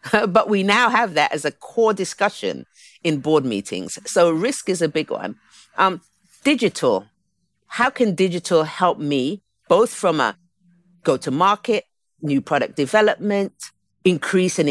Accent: British